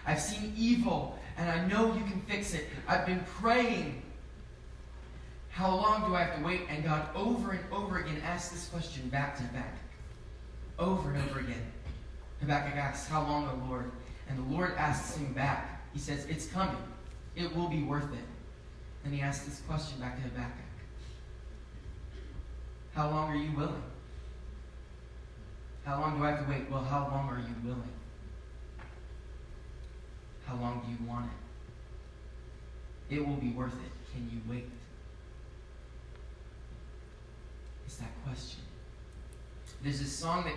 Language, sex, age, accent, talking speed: English, male, 20-39, American, 155 wpm